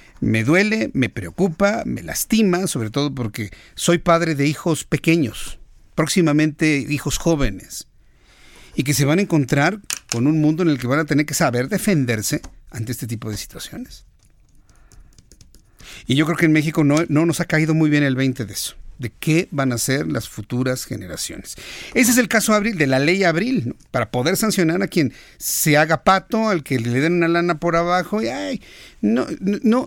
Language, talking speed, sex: Spanish, 190 wpm, male